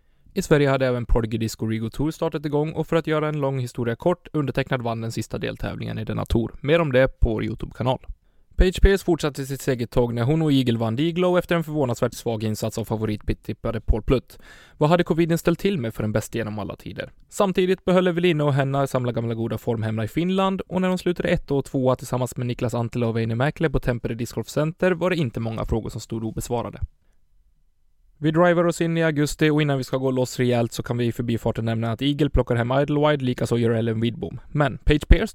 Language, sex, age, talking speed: Swedish, male, 20-39, 225 wpm